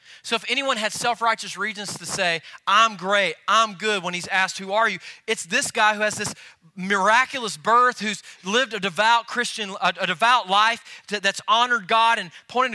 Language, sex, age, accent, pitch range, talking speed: English, male, 30-49, American, 185-225 Hz, 190 wpm